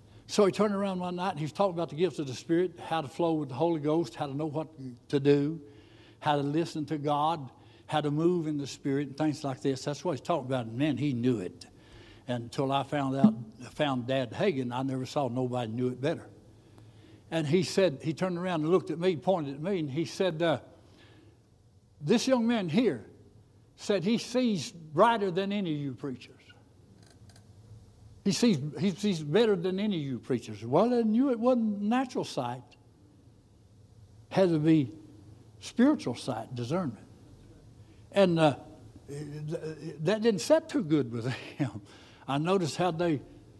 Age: 60-79